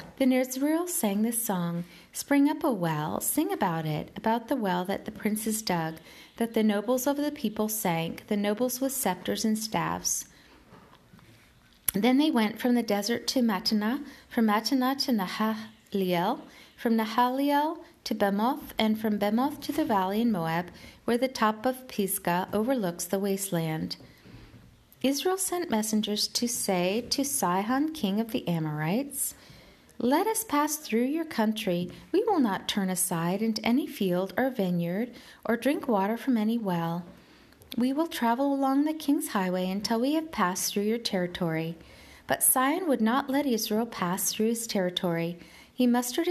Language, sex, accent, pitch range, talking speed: English, female, American, 195-270 Hz, 160 wpm